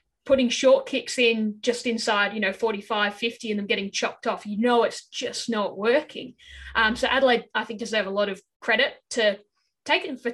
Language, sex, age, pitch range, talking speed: English, female, 10-29, 205-245 Hz, 205 wpm